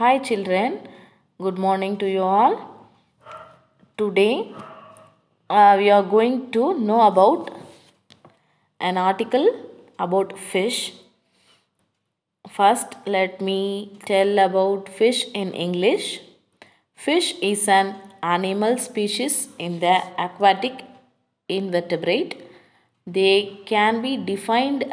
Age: 20-39